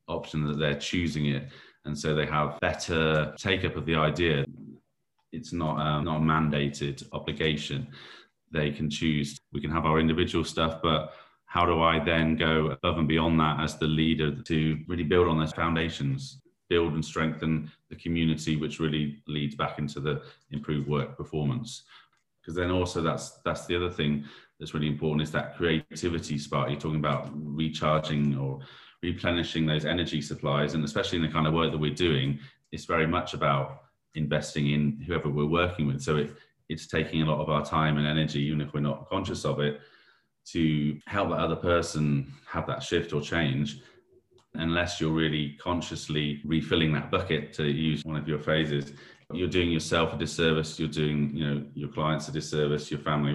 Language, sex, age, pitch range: English, male, 30-49, 75-80 Hz